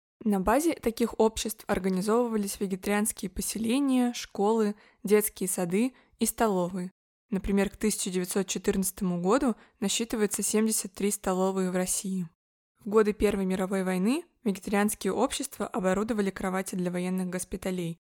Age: 20-39